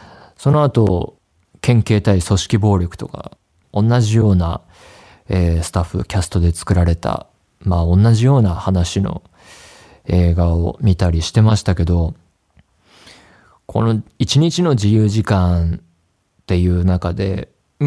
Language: Japanese